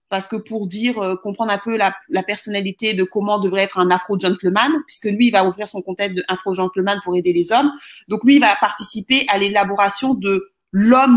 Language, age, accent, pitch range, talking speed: French, 30-49, French, 205-270 Hz, 205 wpm